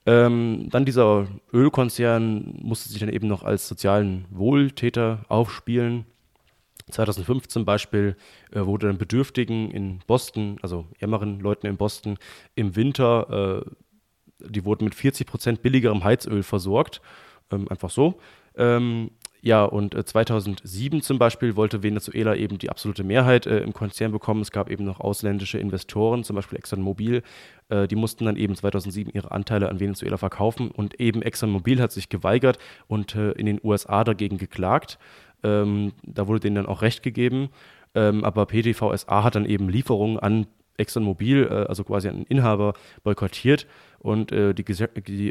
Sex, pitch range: male, 100-115 Hz